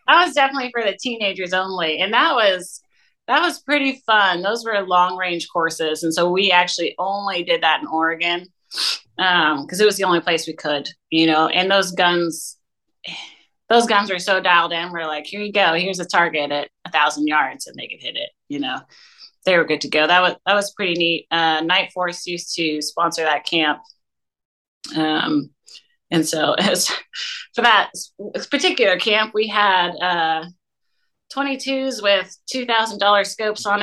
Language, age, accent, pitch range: English, 30-49, American, 165-215 Hz